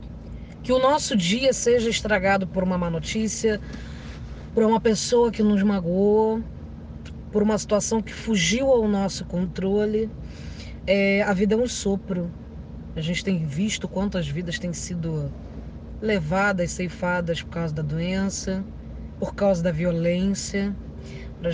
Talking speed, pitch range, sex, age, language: 135 wpm, 170-220 Hz, female, 20-39, Portuguese